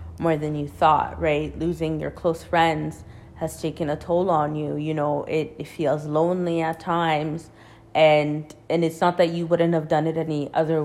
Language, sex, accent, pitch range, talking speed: English, female, American, 150-175 Hz, 195 wpm